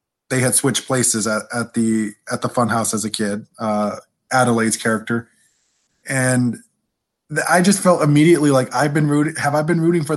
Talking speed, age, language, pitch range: 185 wpm, 20-39, English, 120-155 Hz